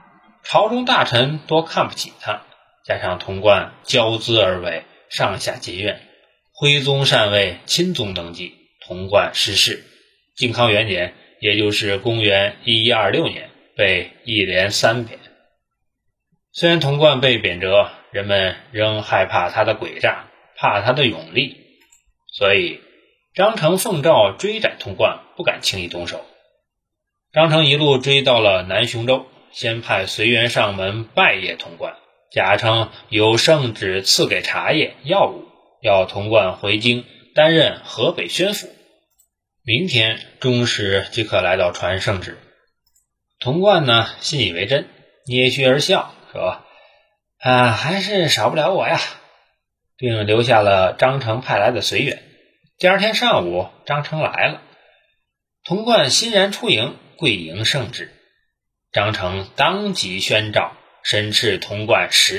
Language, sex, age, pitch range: Chinese, male, 20-39, 105-155 Hz